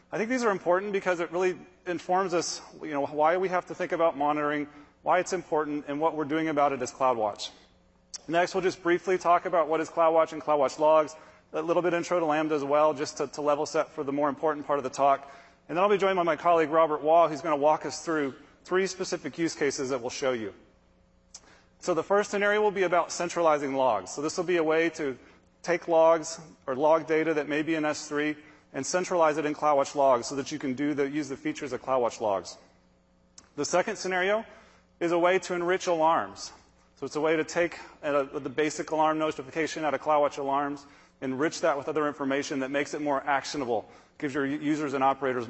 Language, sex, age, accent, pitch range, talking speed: English, male, 30-49, American, 145-170 Hz, 220 wpm